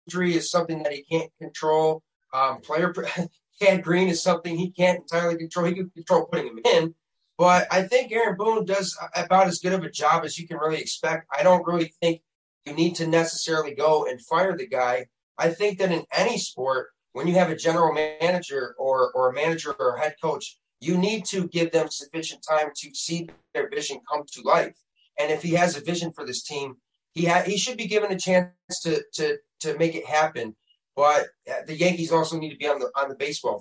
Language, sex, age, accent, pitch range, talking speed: English, male, 30-49, American, 155-180 Hz, 215 wpm